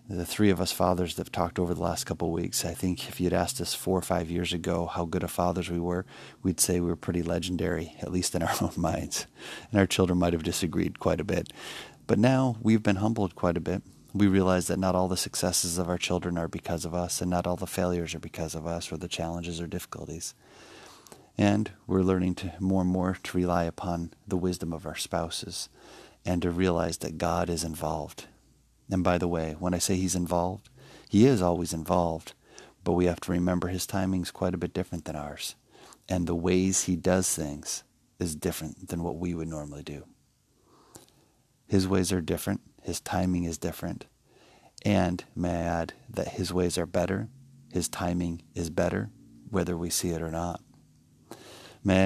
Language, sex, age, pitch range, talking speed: English, male, 30-49, 85-95 Hz, 205 wpm